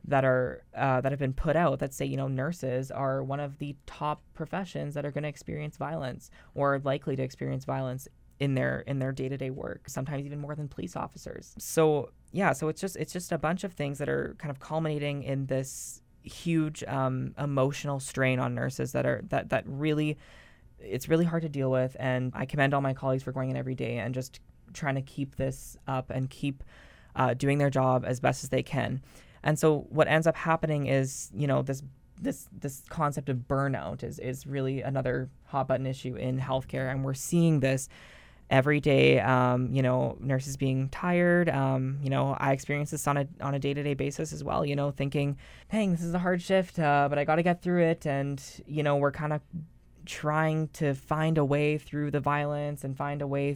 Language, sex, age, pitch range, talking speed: English, female, 20-39, 130-150 Hz, 220 wpm